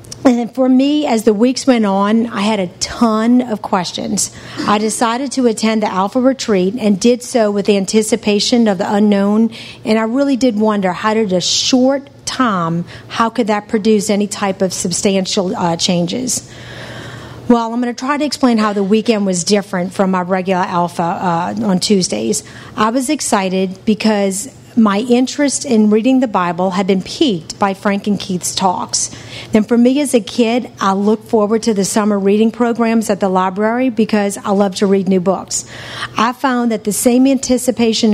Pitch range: 195-235 Hz